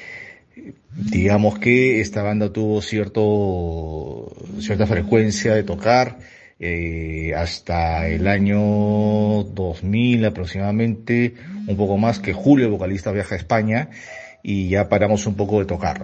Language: Spanish